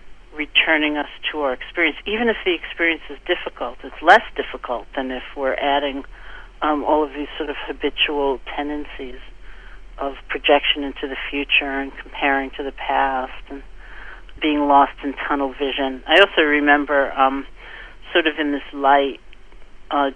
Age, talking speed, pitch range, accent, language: 40-59, 155 wpm, 135-150 Hz, American, English